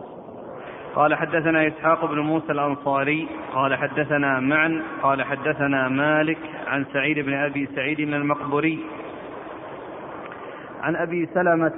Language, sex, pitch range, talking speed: Arabic, male, 145-165 Hz, 105 wpm